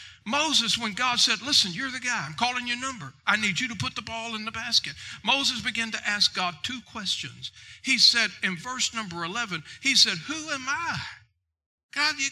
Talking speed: 205 wpm